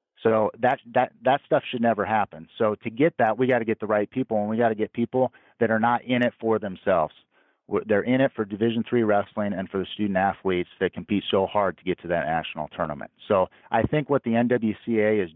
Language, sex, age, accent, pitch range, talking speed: English, male, 40-59, American, 100-120 Hz, 240 wpm